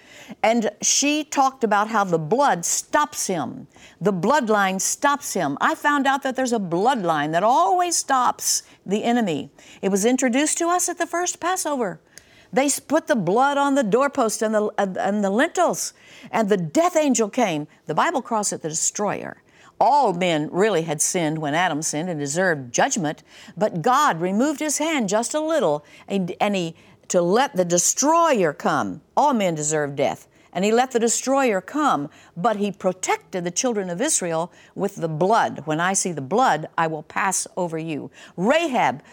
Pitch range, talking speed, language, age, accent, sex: 175-265 Hz, 175 wpm, English, 60-79, American, female